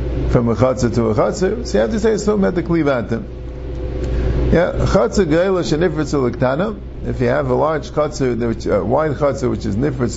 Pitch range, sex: 100-160 Hz, male